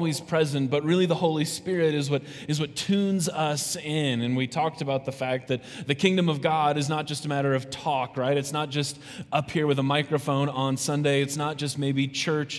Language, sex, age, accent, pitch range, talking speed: English, male, 20-39, American, 130-150 Hz, 225 wpm